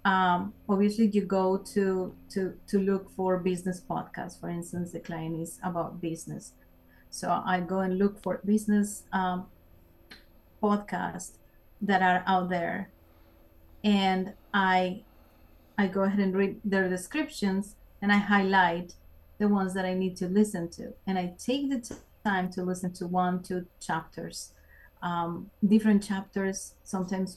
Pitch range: 175-205 Hz